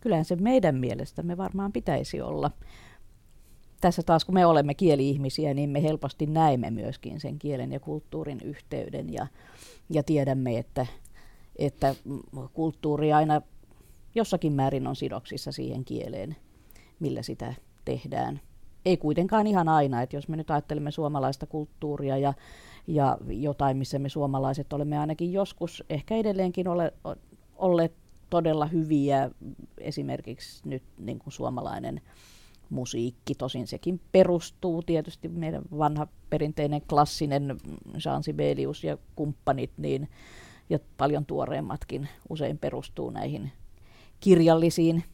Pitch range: 135-165 Hz